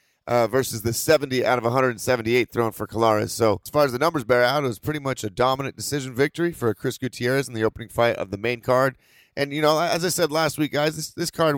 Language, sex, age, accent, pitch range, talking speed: English, male, 30-49, American, 115-140 Hz, 255 wpm